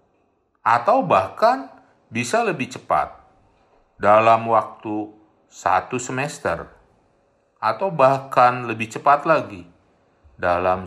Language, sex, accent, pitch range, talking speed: Indonesian, male, native, 85-115 Hz, 85 wpm